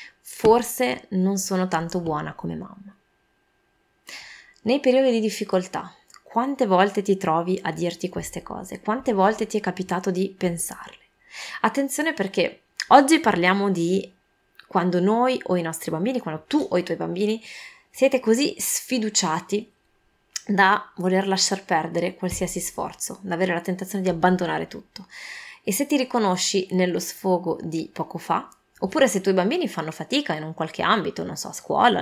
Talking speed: 155 wpm